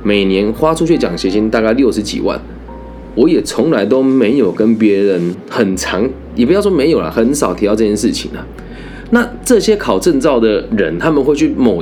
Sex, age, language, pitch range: male, 20-39, Chinese, 95-160 Hz